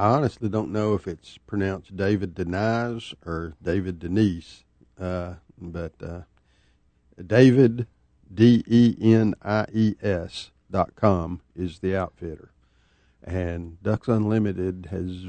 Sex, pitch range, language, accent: male, 85-105 Hz, English, American